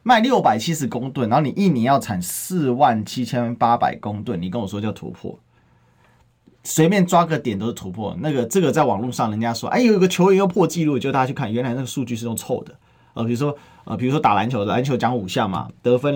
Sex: male